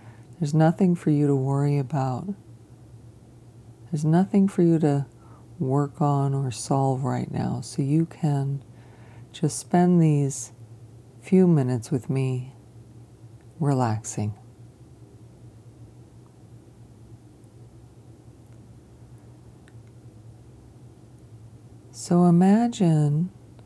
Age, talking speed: 40-59, 80 wpm